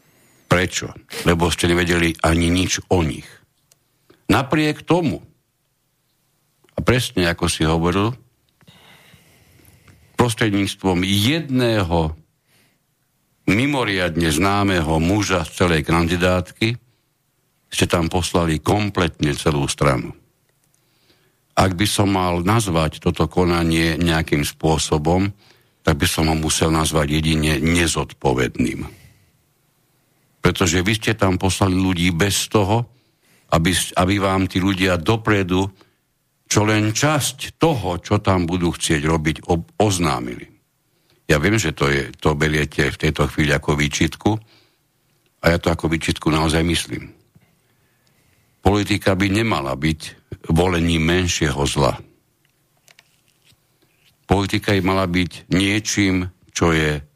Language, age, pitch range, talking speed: Slovak, 60-79, 80-105 Hz, 110 wpm